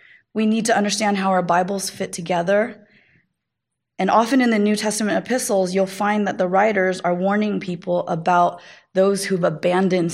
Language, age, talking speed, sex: English, 20-39, 165 wpm, female